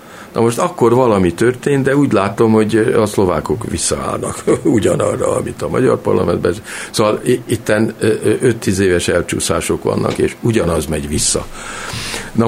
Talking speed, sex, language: 135 wpm, male, Hungarian